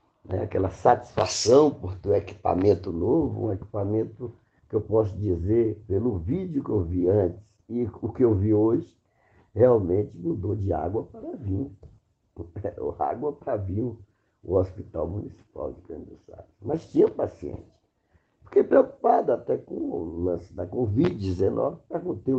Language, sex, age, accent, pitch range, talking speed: English, male, 60-79, Brazilian, 95-125 Hz, 140 wpm